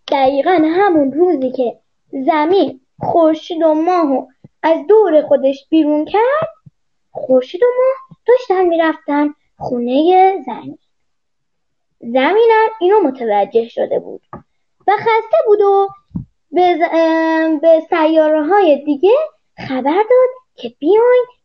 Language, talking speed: Persian, 115 wpm